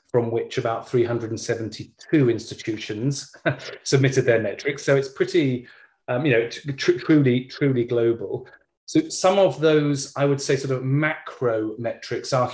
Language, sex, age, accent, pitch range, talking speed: English, male, 30-49, British, 110-140 Hz, 140 wpm